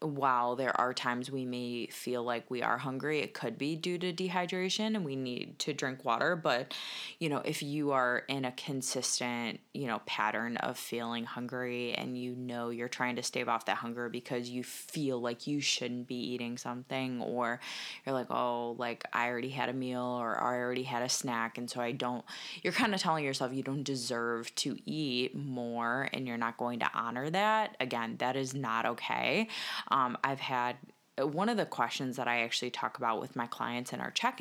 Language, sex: English, female